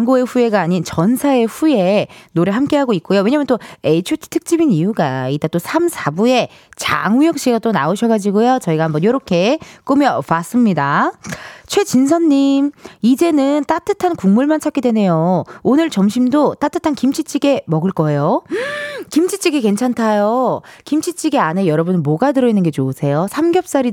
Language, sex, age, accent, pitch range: Korean, female, 20-39, native, 180-285 Hz